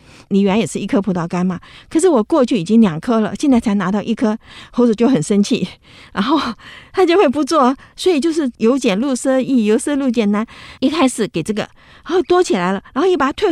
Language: Chinese